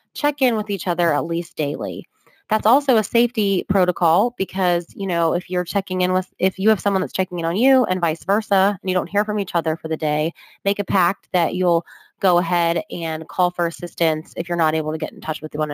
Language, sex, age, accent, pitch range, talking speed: English, female, 20-39, American, 165-200 Hz, 245 wpm